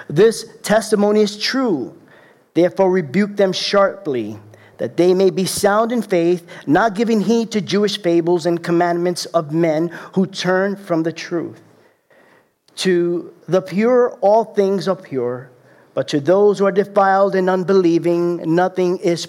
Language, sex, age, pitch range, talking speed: English, male, 50-69, 175-215 Hz, 145 wpm